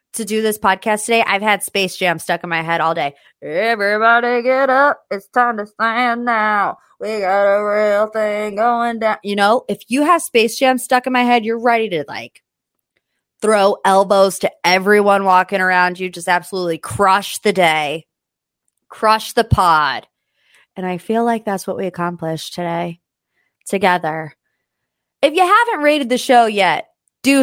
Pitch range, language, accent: 185-245 Hz, English, American